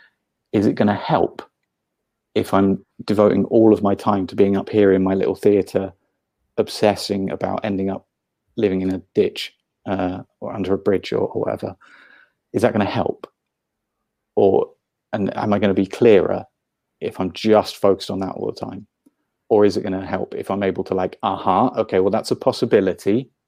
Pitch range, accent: 90-100 Hz, British